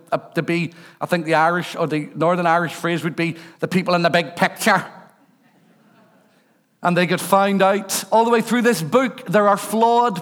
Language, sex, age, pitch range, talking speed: English, male, 50-69, 165-200 Hz, 200 wpm